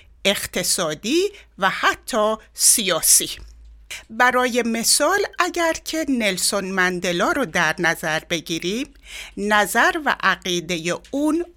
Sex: female